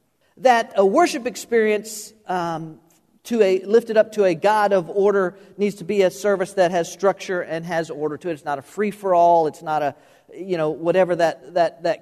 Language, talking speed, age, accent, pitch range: English, 200 wpm, 50-69, American, 165-215 Hz